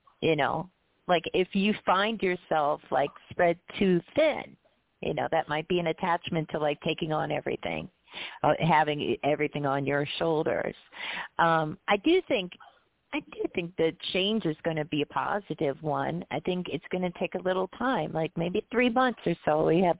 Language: English